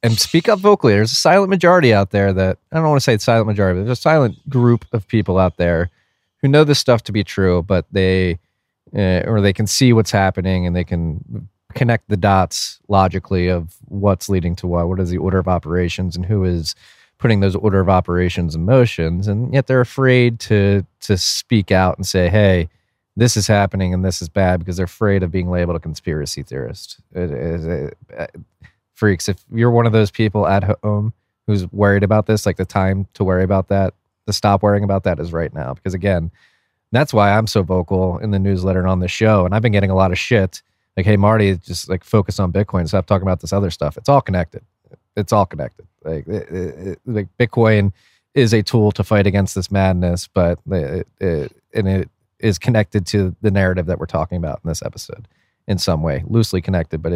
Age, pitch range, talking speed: 30-49, 90-110 Hz, 215 wpm